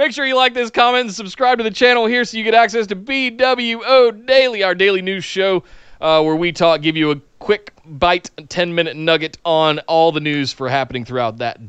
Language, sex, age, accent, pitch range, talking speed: English, male, 30-49, American, 155-200 Hz, 215 wpm